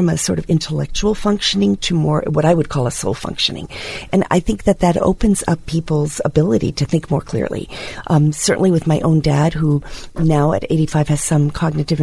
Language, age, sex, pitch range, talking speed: English, 40-59, female, 145-180 Hz, 200 wpm